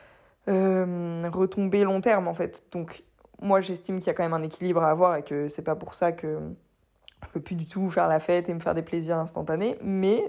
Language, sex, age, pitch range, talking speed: French, female, 20-39, 175-205 Hz, 235 wpm